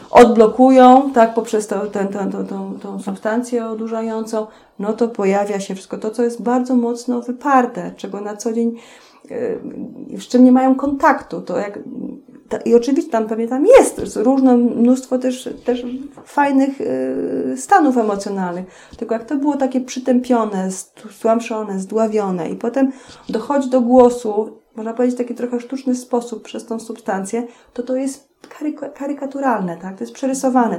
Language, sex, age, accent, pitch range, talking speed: Polish, female, 30-49, native, 205-250 Hz, 150 wpm